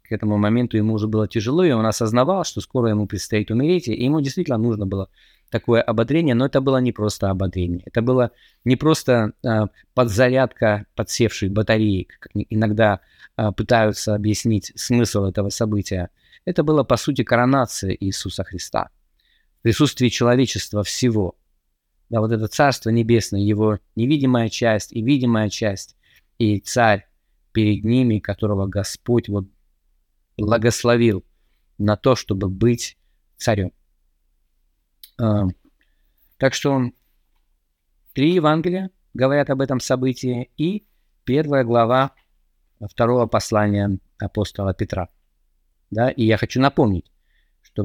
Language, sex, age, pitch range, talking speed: Russian, male, 20-39, 100-130 Hz, 120 wpm